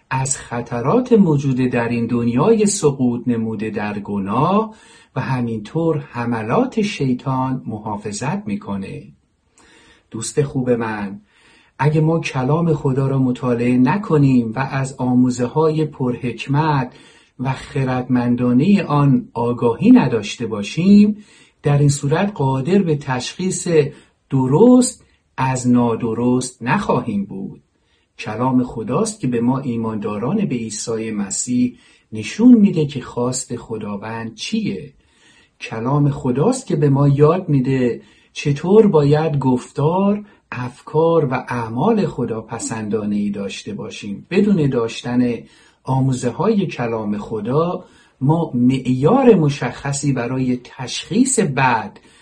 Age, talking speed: 50-69, 105 wpm